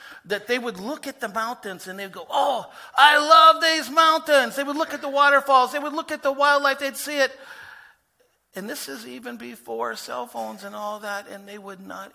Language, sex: English, male